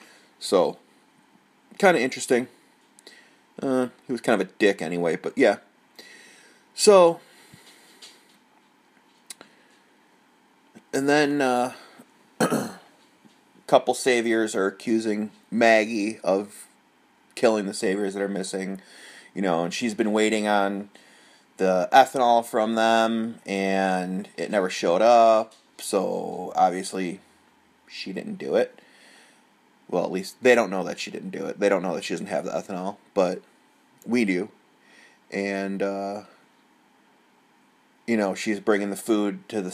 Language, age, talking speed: English, 30-49, 130 wpm